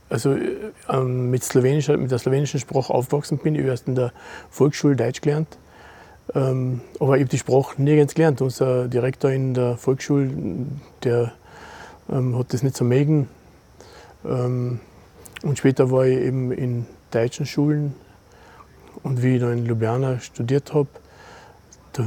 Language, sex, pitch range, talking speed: German, male, 120-140 Hz, 145 wpm